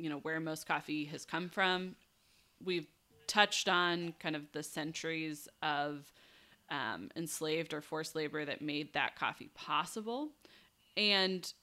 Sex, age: female, 20-39